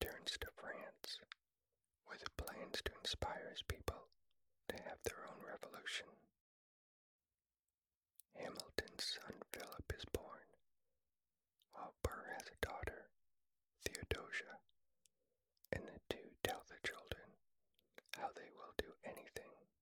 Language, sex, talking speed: English, male, 110 wpm